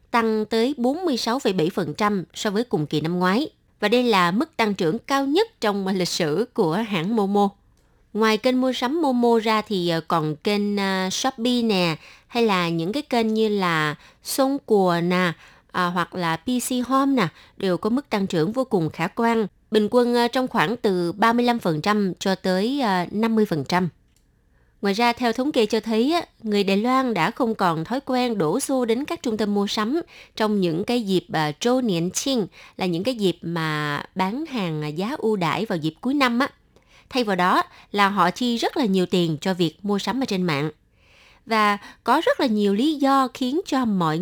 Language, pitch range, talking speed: Vietnamese, 180-245 Hz, 190 wpm